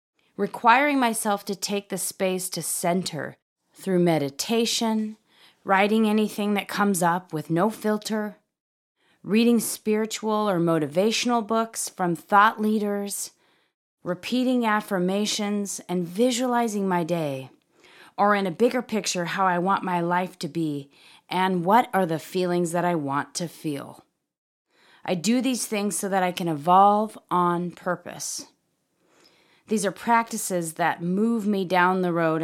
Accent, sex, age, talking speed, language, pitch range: American, female, 30-49, 135 wpm, English, 165-215 Hz